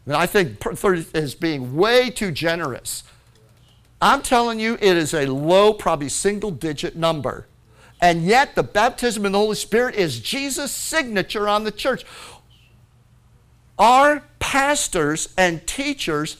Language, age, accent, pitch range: English, 50-69, American, 165-235 Hz